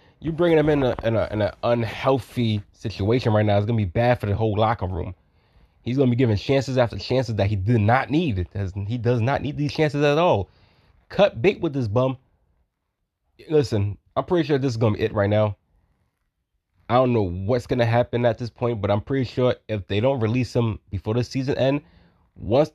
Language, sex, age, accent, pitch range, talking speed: English, male, 20-39, American, 100-130 Hz, 210 wpm